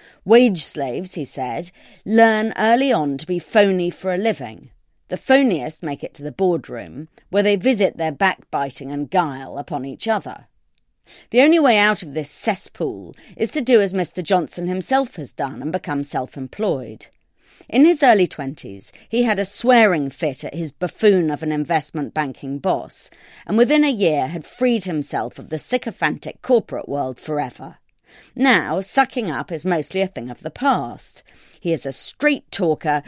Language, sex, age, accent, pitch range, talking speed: English, female, 40-59, British, 150-225 Hz, 170 wpm